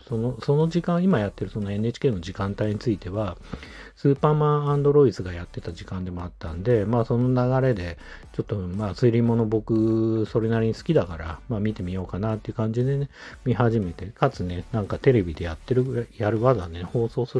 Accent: native